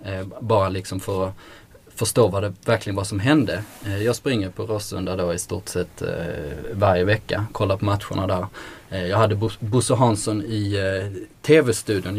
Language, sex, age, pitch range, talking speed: Swedish, male, 20-39, 95-115 Hz, 155 wpm